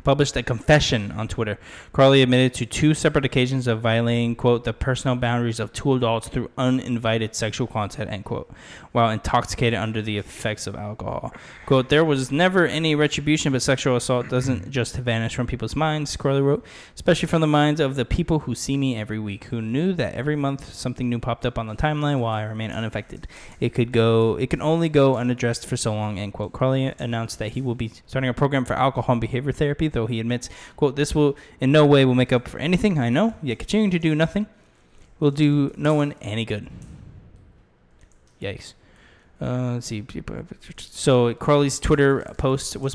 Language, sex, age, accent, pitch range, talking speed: English, male, 10-29, American, 115-140 Hz, 195 wpm